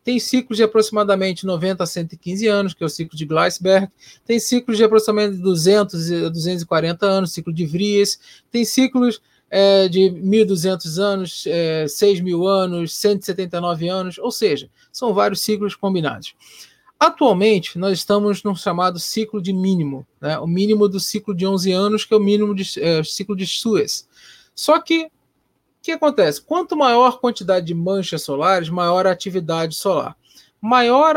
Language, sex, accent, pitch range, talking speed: Portuguese, male, Brazilian, 175-220 Hz, 160 wpm